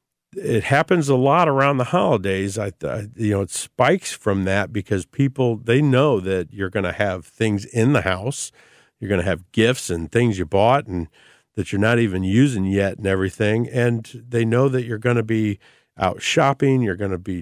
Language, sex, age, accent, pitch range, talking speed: English, male, 50-69, American, 100-130 Hz, 205 wpm